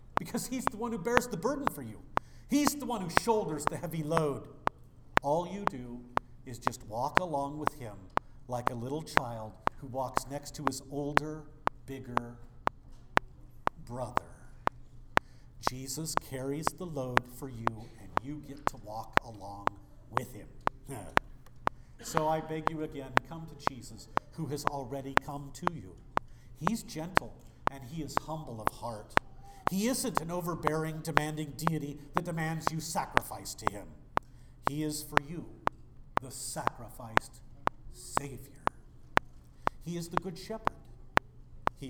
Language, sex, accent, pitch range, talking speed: English, male, American, 130-165 Hz, 145 wpm